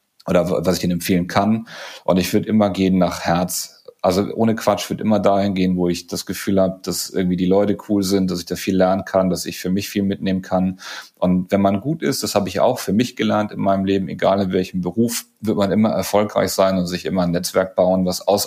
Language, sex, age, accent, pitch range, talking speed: German, male, 30-49, German, 90-100 Hz, 245 wpm